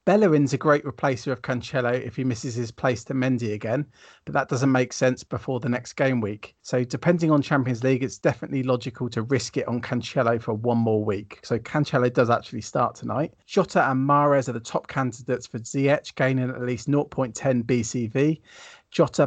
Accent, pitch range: British, 120-145 Hz